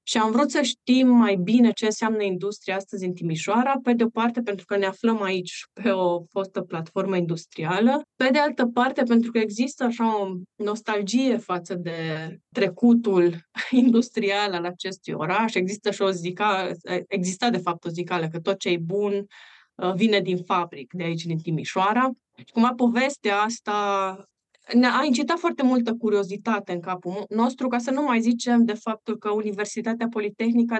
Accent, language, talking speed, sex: native, Romanian, 170 wpm, female